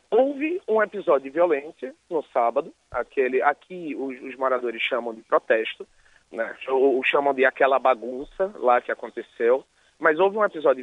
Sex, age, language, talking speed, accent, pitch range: male, 30-49, Portuguese, 155 wpm, Brazilian, 155-215 Hz